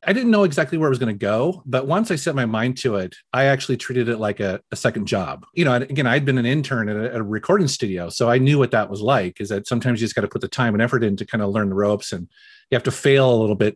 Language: English